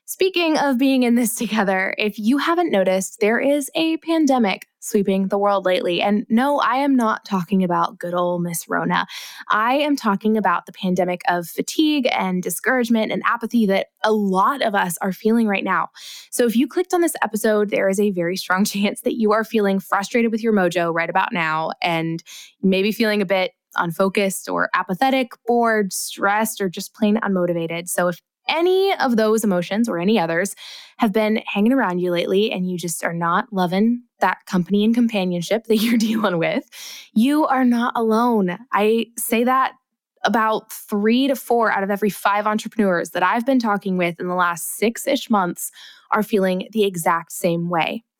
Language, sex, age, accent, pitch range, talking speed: English, female, 10-29, American, 185-235 Hz, 185 wpm